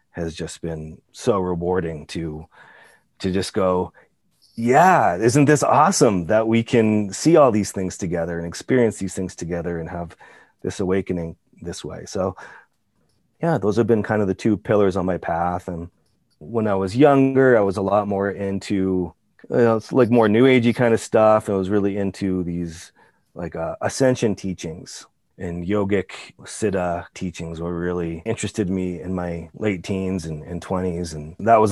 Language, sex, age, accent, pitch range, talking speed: English, male, 30-49, American, 90-110 Hz, 170 wpm